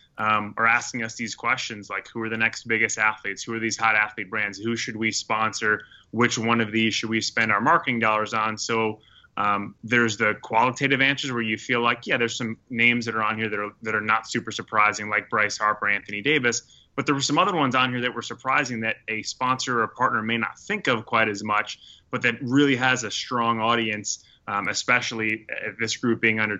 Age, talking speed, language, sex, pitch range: 20-39, 230 wpm, English, male, 105-120 Hz